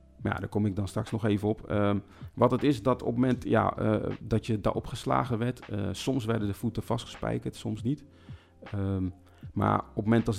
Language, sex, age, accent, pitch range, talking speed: Dutch, male, 40-59, Dutch, 95-110 Hz, 200 wpm